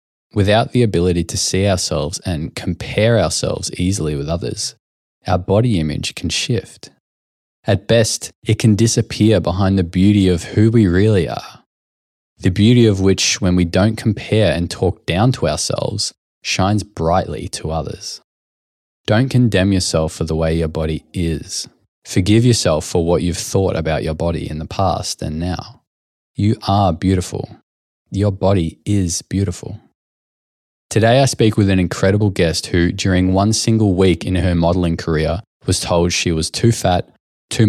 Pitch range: 85-105 Hz